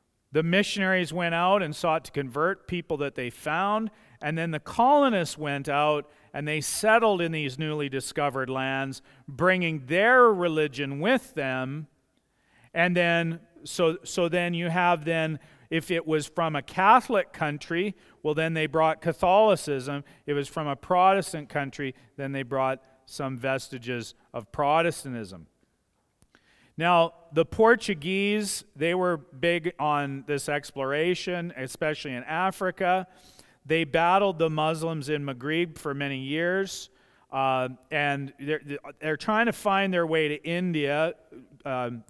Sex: male